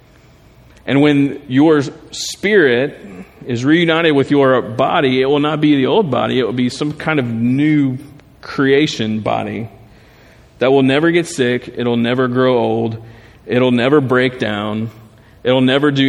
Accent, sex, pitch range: American, male, 115-140 Hz